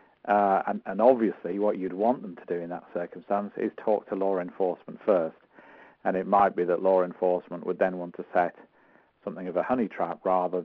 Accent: British